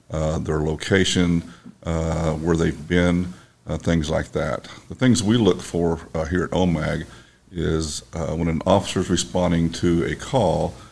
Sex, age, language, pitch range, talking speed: male, 50-69, English, 80-90 Hz, 165 wpm